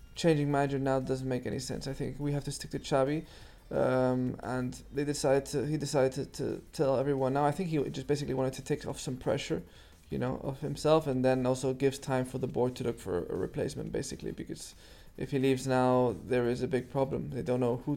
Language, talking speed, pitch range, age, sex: English, 235 wpm, 125-145 Hz, 20-39, male